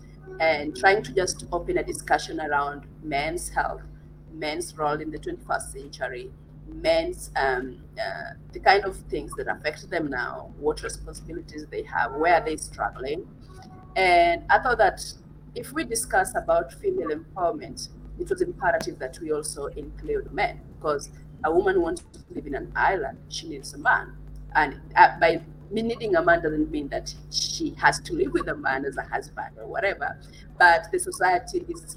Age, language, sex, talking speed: 30-49, Hindi, female, 170 wpm